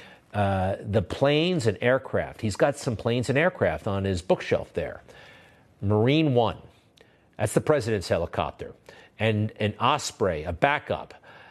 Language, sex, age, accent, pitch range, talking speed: English, male, 50-69, American, 105-140 Hz, 135 wpm